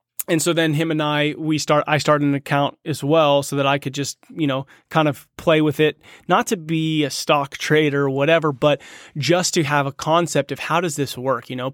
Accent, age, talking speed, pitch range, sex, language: American, 30-49, 240 wpm, 135-160 Hz, male, English